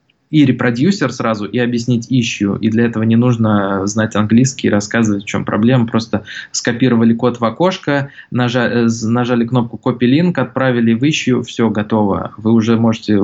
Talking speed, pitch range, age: 160 wpm, 110-130 Hz, 20-39